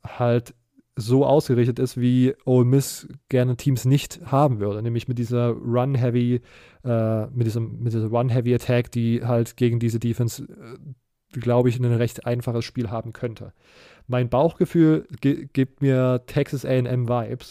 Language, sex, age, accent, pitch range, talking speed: German, male, 20-39, German, 120-130 Hz, 145 wpm